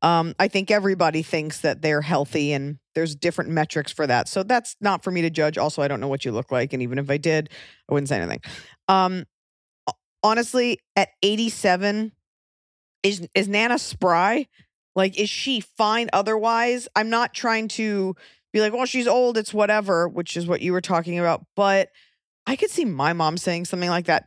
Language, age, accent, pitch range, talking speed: English, 20-39, American, 165-215 Hz, 195 wpm